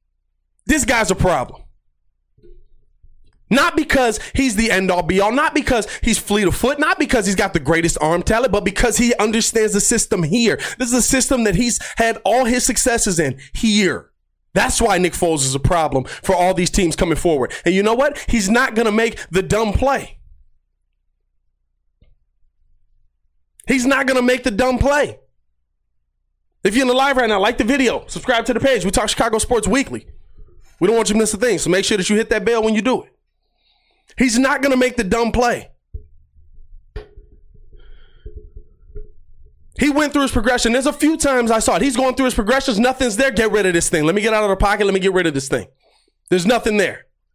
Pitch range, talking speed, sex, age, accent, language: 160-250 Hz, 210 wpm, male, 30-49, American, English